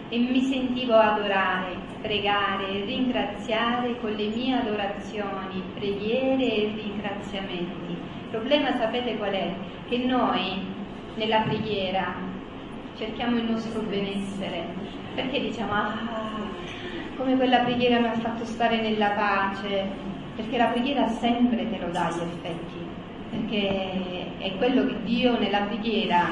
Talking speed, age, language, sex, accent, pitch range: 125 wpm, 30-49, Italian, female, native, 195-240 Hz